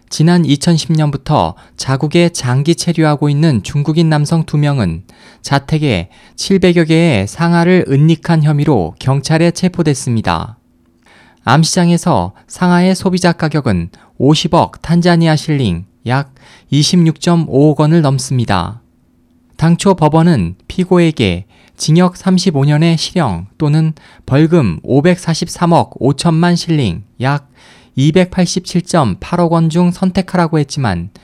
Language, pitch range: Korean, 125-175 Hz